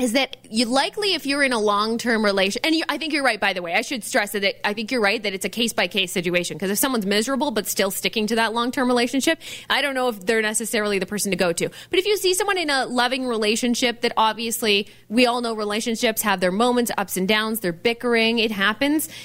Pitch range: 205-250 Hz